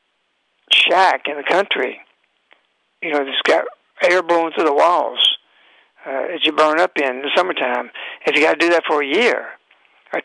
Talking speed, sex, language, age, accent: 185 wpm, male, English, 60-79, American